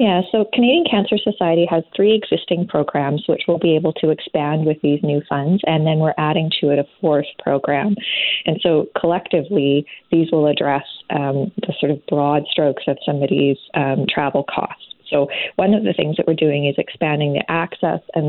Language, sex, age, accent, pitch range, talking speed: English, female, 20-39, American, 145-175 Hz, 190 wpm